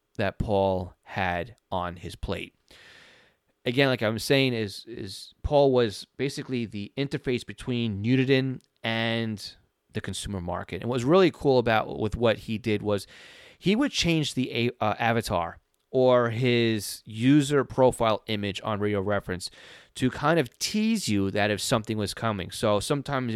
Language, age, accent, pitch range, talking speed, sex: English, 30-49, American, 100-125 Hz, 155 wpm, male